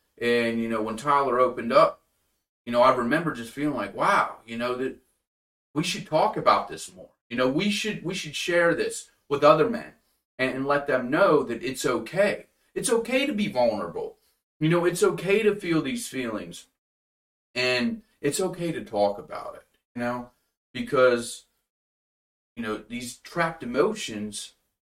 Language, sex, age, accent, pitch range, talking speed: English, male, 30-49, American, 120-165 Hz, 170 wpm